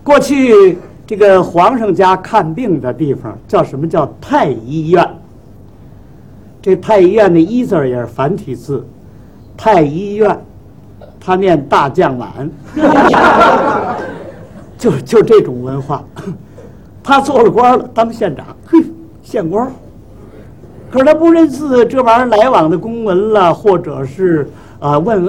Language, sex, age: Chinese, male, 50-69